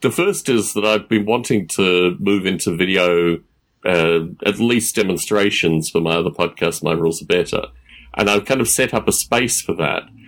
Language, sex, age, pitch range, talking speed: English, male, 30-49, 90-120 Hz, 195 wpm